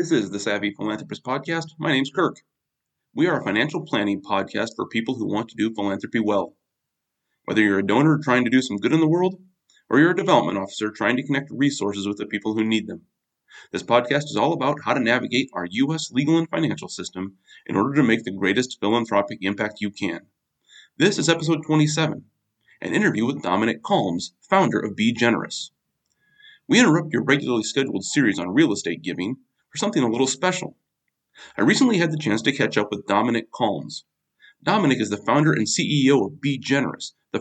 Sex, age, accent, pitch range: male, 30-49, American, 105-155 Hz